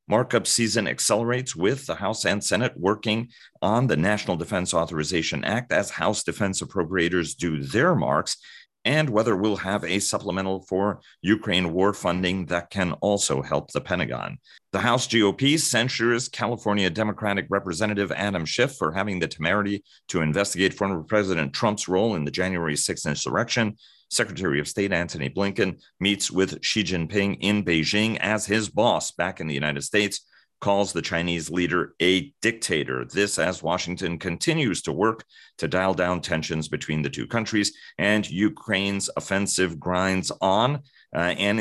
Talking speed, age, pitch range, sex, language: 155 wpm, 40-59, 85-105 Hz, male, English